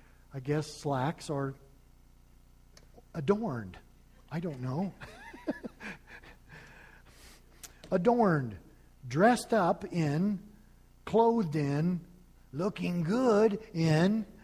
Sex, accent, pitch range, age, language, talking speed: male, American, 145-205 Hz, 50-69, English, 70 wpm